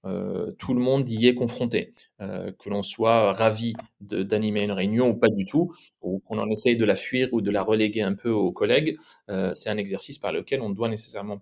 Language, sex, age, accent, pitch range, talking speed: French, male, 30-49, French, 105-125 Hz, 225 wpm